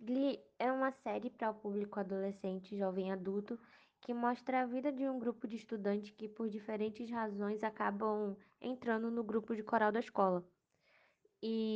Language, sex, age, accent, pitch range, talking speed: Portuguese, female, 10-29, Brazilian, 195-225 Hz, 165 wpm